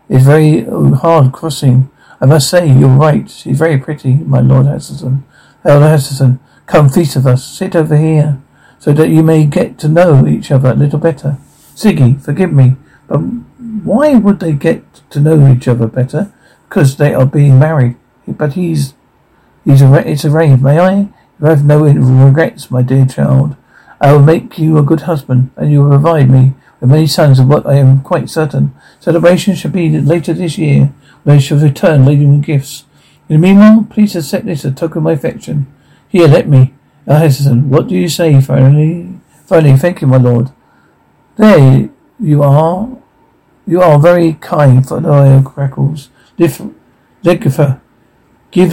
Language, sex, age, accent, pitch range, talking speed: English, male, 60-79, British, 135-165 Hz, 175 wpm